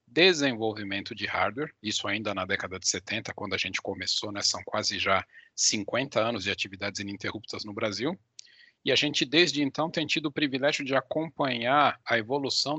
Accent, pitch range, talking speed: Brazilian, 105-135 Hz, 175 wpm